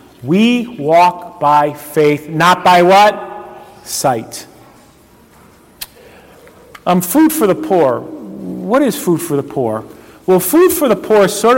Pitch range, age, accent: 165-210 Hz, 40-59, American